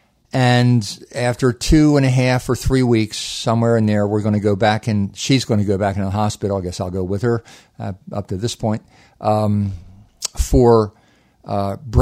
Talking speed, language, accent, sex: 195 wpm, English, American, male